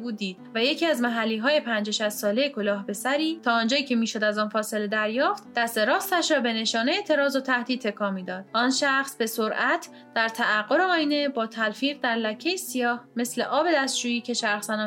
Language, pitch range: Persian, 220-295 Hz